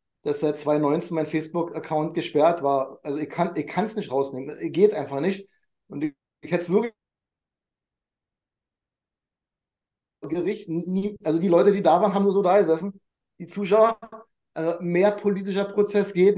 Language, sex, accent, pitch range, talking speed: German, male, German, 150-200 Hz, 150 wpm